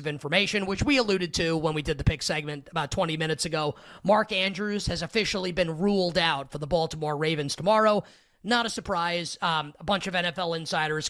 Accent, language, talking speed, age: American, English, 195 wpm, 30-49